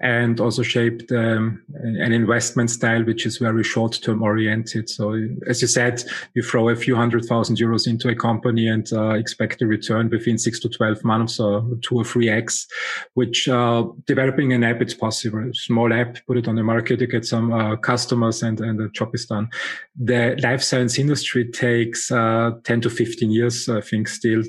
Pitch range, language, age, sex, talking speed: 115-125 Hz, English, 20-39, male, 200 wpm